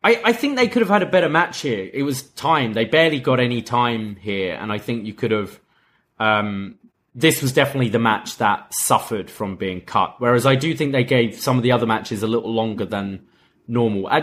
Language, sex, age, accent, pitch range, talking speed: English, male, 20-39, British, 110-150 Hz, 225 wpm